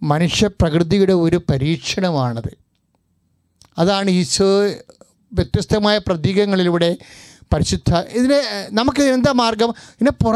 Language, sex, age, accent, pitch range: English, male, 30-49, Indian, 180-260 Hz